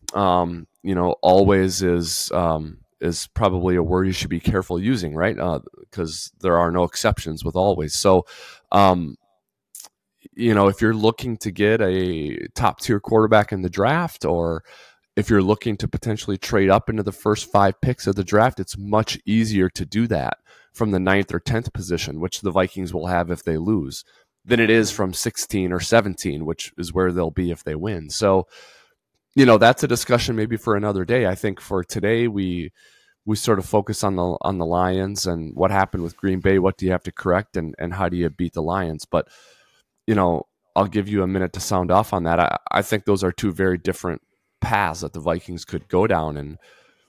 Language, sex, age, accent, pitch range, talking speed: English, male, 20-39, American, 90-105 Hz, 210 wpm